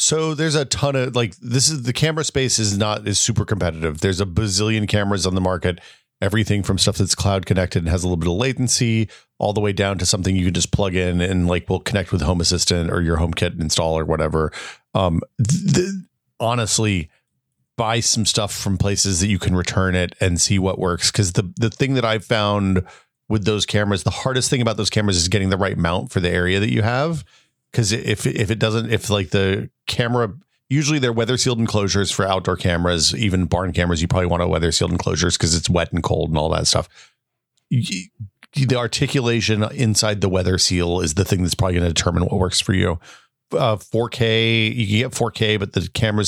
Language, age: English, 40-59